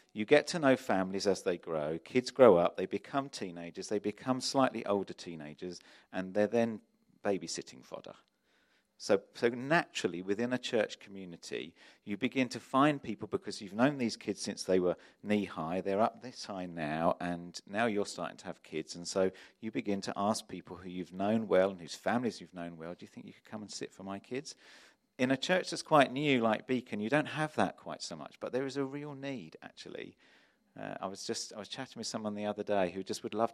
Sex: male